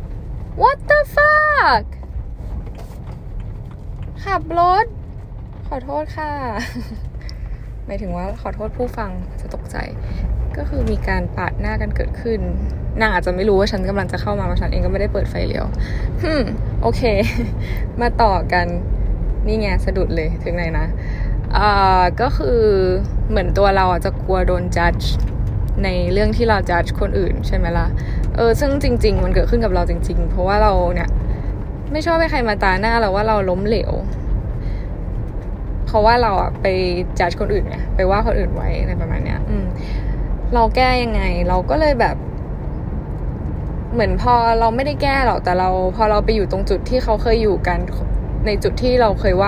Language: Thai